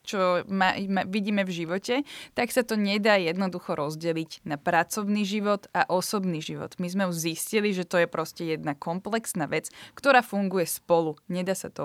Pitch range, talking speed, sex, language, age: 180-215 Hz, 165 wpm, female, Slovak, 20-39